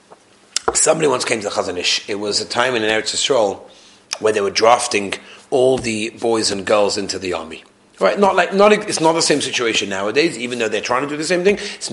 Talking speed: 225 wpm